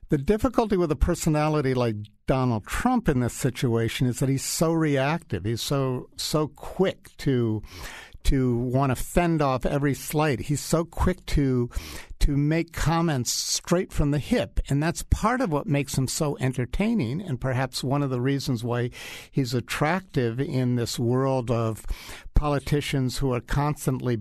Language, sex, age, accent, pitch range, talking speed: English, male, 60-79, American, 120-155 Hz, 160 wpm